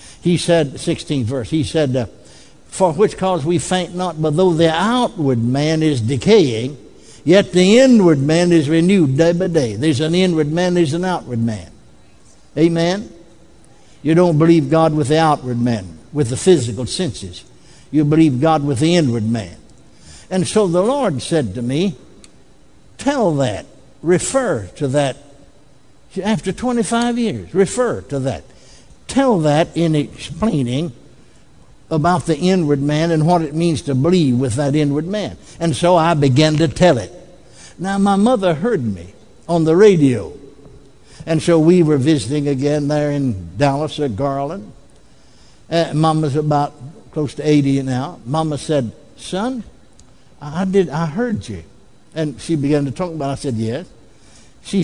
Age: 60-79